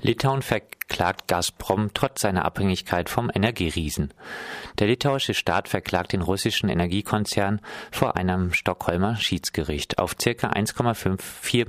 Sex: male